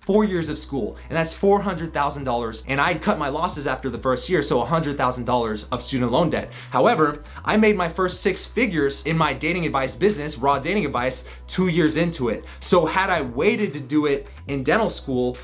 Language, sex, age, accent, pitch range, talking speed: English, male, 20-39, American, 130-175 Hz, 200 wpm